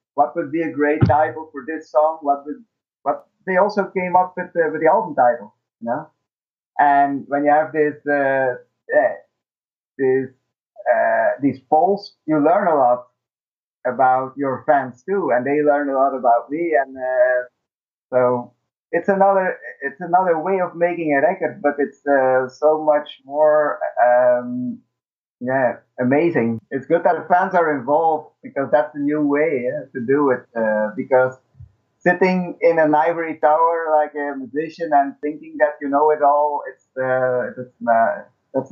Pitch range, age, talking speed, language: 130-160 Hz, 50-69, 165 wpm, English